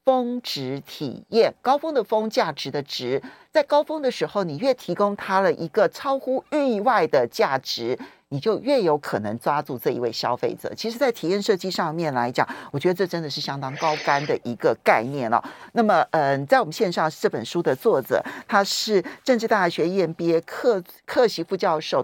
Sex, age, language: male, 50-69, Chinese